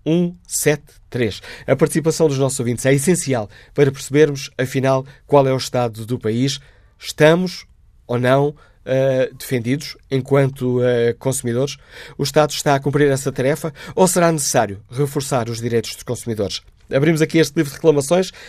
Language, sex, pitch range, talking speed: Portuguese, male, 125-150 Hz, 155 wpm